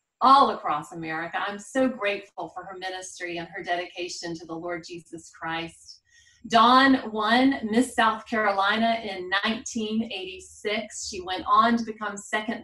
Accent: American